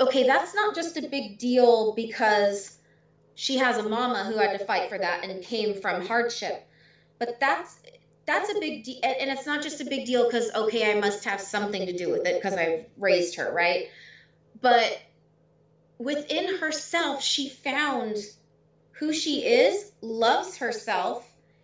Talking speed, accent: 170 wpm, American